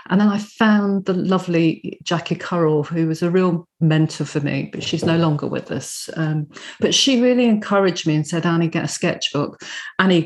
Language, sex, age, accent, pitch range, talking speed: English, female, 40-59, British, 155-175 Hz, 200 wpm